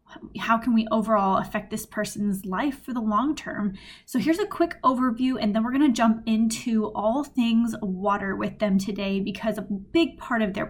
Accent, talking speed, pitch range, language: American, 200 wpm, 210-250 Hz, English